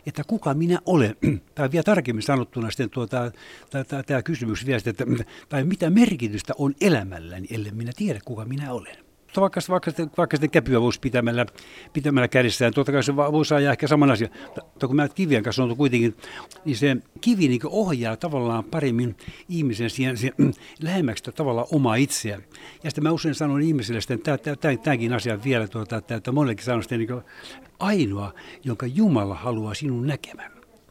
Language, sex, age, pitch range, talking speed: Finnish, male, 60-79, 115-150 Hz, 160 wpm